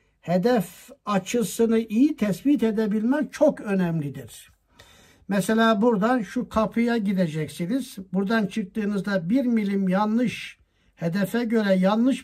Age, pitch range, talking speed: 60-79, 190-235 Hz, 100 wpm